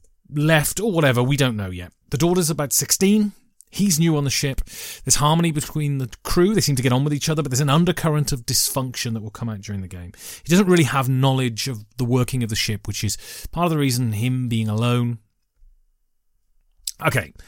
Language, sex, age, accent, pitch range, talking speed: English, male, 30-49, British, 115-160 Hz, 215 wpm